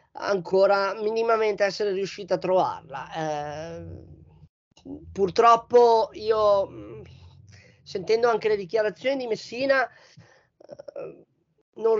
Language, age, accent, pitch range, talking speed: Italian, 30-49, native, 175-230 Hz, 80 wpm